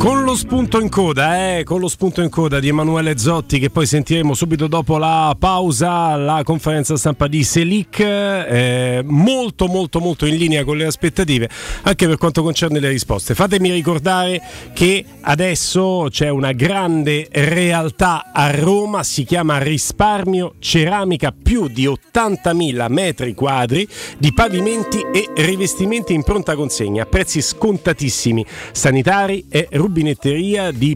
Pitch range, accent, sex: 140-185 Hz, native, male